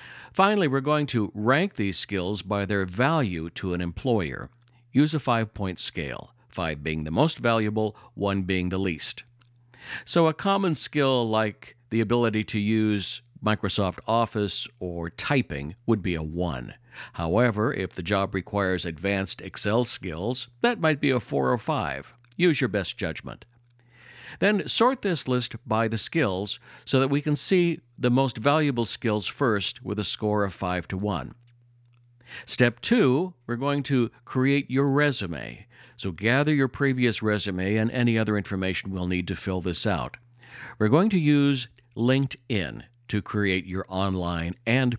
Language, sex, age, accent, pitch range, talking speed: English, male, 50-69, American, 95-130 Hz, 160 wpm